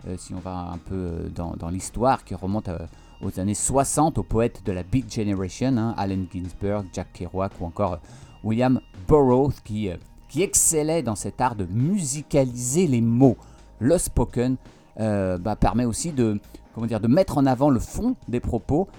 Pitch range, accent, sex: 95-125 Hz, French, male